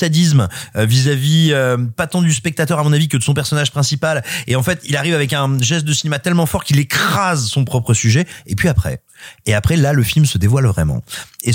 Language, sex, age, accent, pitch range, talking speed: French, male, 30-49, French, 120-165 Hz, 230 wpm